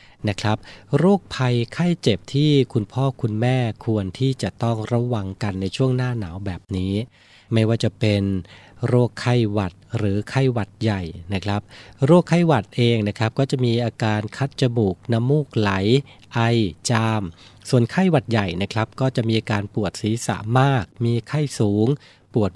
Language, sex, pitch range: Thai, male, 100-125 Hz